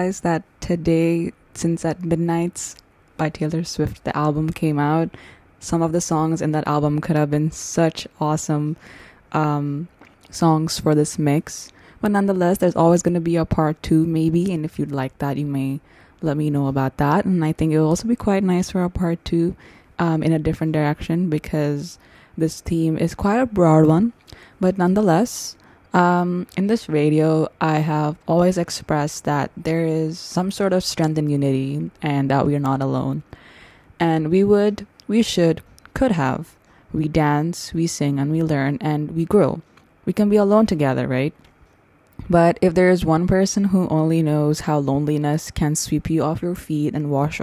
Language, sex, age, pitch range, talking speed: English, female, 20-39, 150-175 Hz, 180 wpm